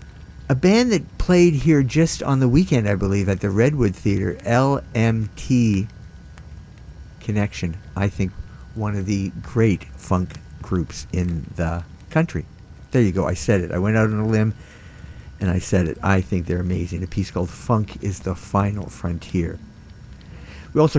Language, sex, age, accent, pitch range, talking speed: English, male, 50-69, American, 95-120 Hz, 165 wpm